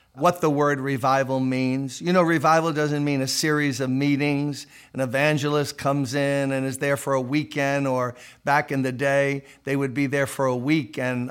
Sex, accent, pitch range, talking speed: male, American, 130-165 Hz, 195 wpm